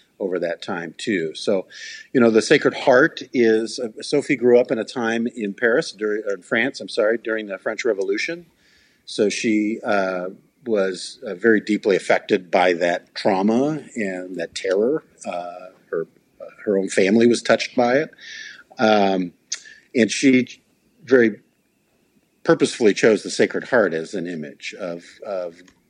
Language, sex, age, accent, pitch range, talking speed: English, male, 50-69, American, 90-115 Hz, 155 wpm